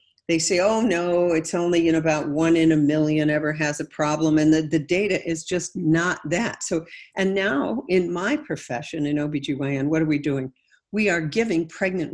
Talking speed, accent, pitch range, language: 210 wpm, American, 155-205 Hz, English